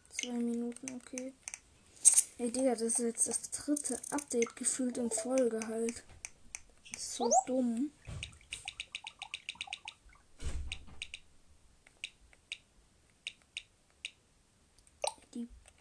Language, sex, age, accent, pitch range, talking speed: German, female, 10-29, German, 235-265 Hz, 75 wpm